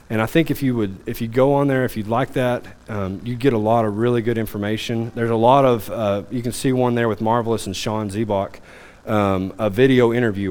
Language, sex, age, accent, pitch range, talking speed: English, male, 30-49, American, 105-130 Hz, 245 wpm